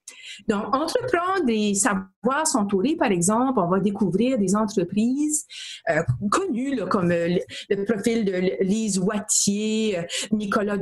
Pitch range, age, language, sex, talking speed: 200-250 Hz, 50-69, French, female, 140 wpm